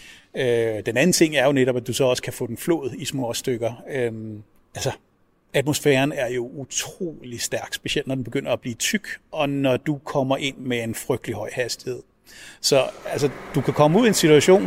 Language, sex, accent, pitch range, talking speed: Danish, male, native, 140-185 Hz, 195 wpm